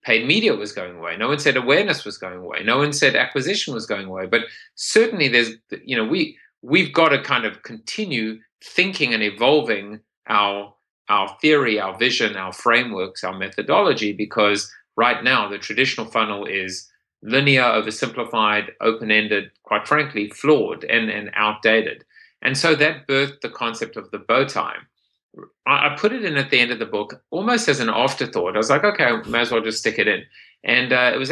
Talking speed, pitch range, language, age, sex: 190 wpm, 105-135 Hz, English, 30-49, male